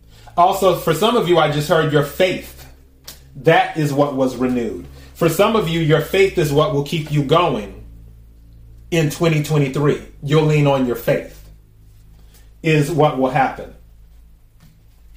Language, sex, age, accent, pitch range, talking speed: English, male, 30-49, American, 130-170 Hz, 150 wpm